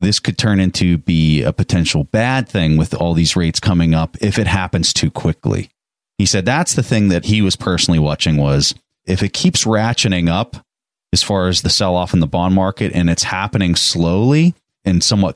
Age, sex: 30-49, male